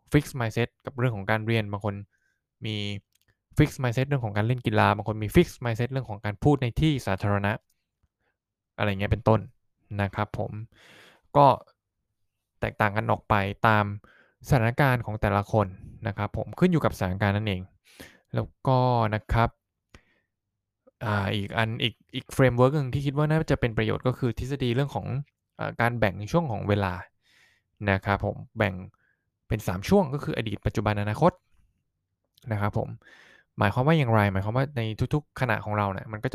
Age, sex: 20-39, male